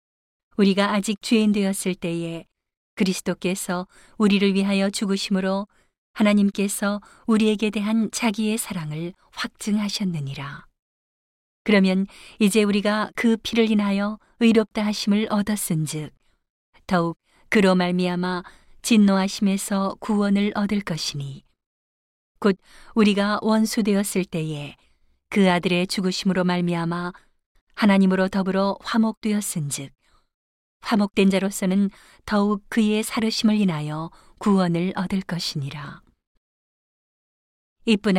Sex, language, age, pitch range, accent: female, Korean, 40-59, 175-210 Hz, native